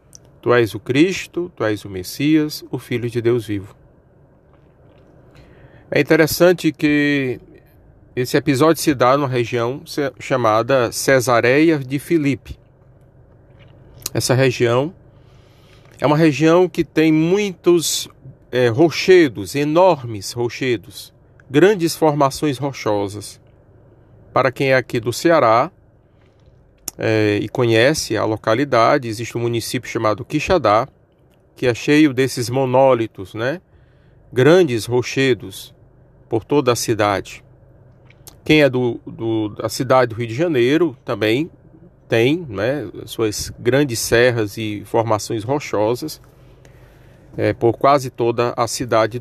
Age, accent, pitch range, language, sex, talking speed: 40-59, Brazilian, 115-145 Hz, Portuguese, male, 115 wpm